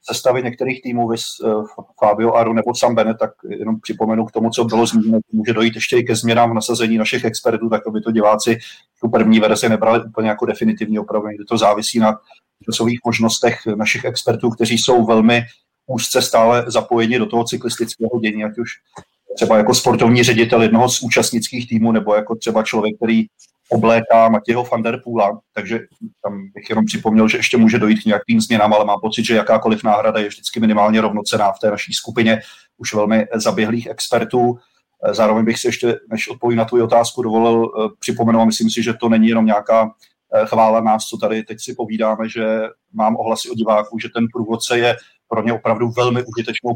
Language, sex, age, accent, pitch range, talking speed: Czech, male, 30-49, native, 110-120 Hz, 185 wpm